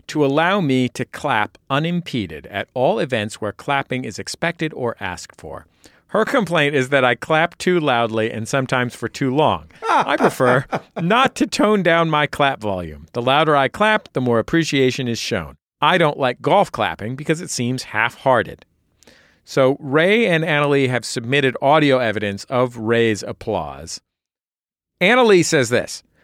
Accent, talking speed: American, 160 wpm